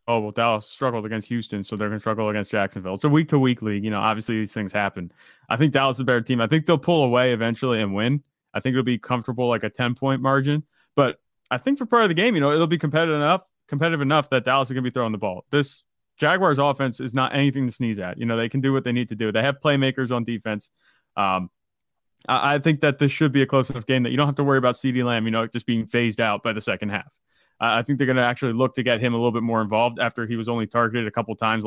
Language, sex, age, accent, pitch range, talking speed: English, male, 20-39, American, 115-140 Hz, 285 wpm